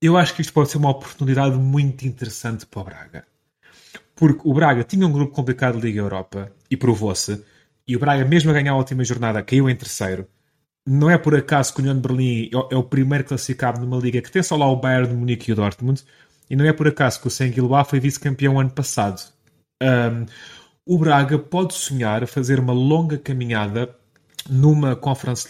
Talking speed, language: 205 wpm, Portuguese